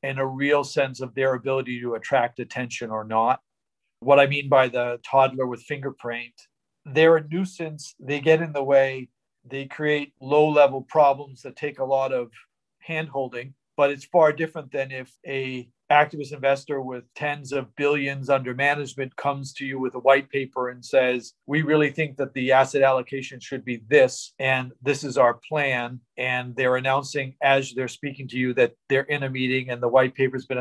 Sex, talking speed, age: male, 190 wpm, 40-59